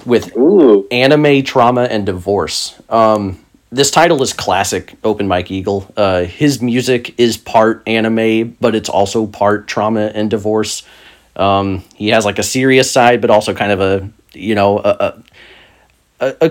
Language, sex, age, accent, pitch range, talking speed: English, male, 30-49, American, 100-125 Hz, 155 wpm